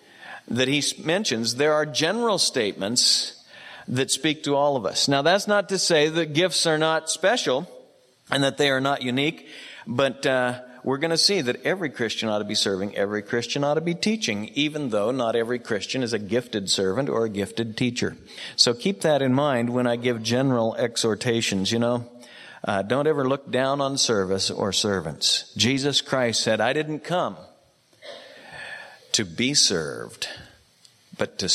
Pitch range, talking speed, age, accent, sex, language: 120-150 Hz, 175 wpm, 50-69, American, male, English